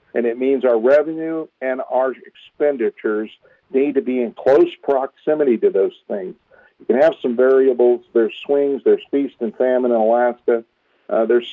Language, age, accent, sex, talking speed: English, 50-69, American, male, 165 wpm